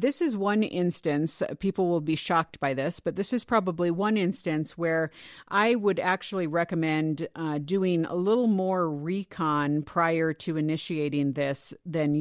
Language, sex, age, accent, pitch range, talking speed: English, female, 50-69, American, 155-190 Hz, 155 wpm